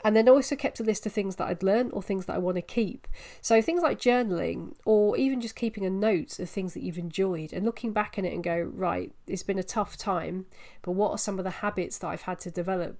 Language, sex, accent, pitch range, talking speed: English, female, British, 180-220 Hz, 270 wpm